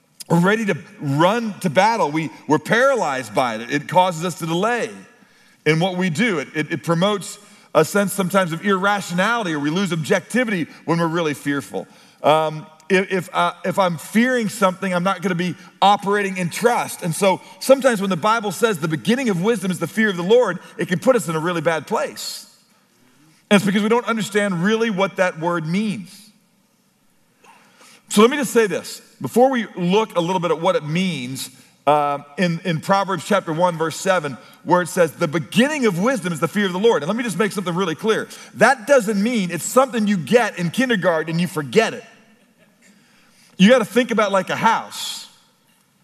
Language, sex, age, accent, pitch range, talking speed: English, male, 40-59, American, 175-220 Hz, 200 wpm